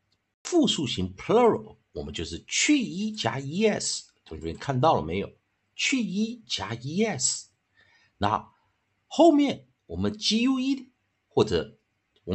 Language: Chinese